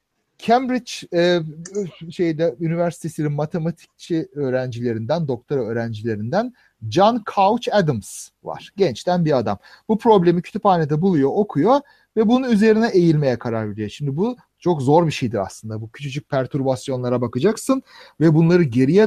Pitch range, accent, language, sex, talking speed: 140-210 Hz, native, Turkish, male, 125 wpm